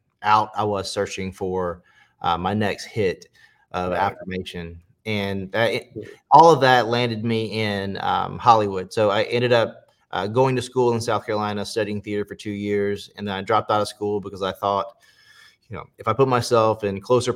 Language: English